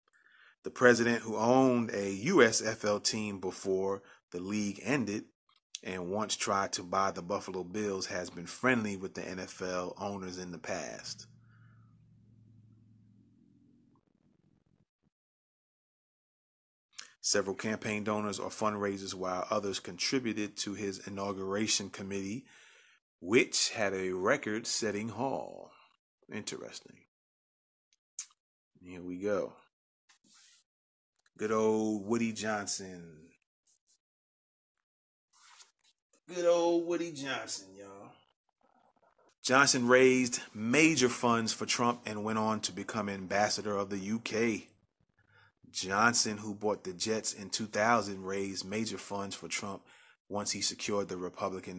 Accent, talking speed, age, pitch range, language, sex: American, 105 wpm, 30-49, 100-115 Hz, English, male